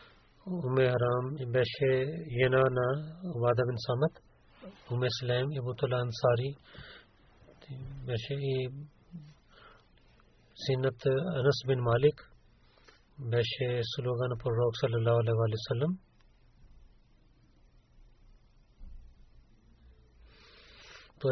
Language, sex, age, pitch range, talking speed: Bulgarian, male, 40-59, 120-140 Hz, 75 wpm